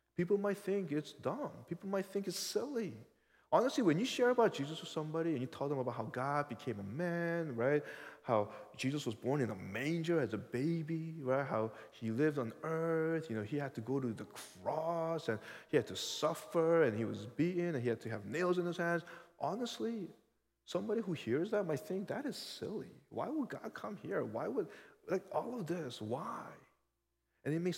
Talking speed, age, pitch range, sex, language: 210 wpm, 20-39, 105-165 Hz, male, English